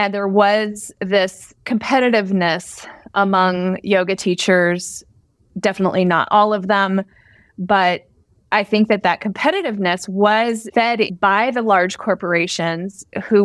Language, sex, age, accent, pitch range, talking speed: English, female, 30-49, American, 190-225 Hz, 115 wpm